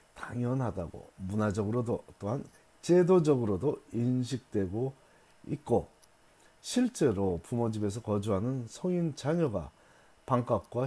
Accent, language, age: native, Korean, 40-59